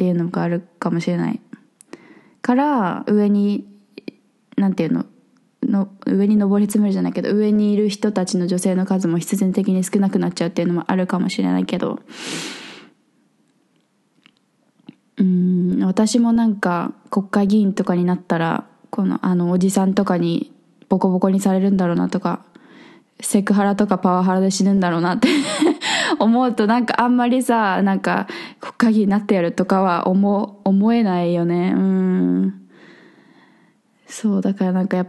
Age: 20-39